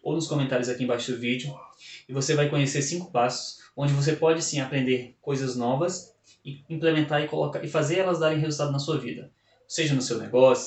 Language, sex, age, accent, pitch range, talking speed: Portuguese, male, 10-29, Brazilian, 130-160 Hz, 200 wpm